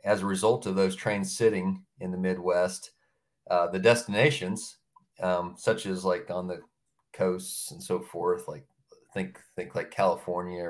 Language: English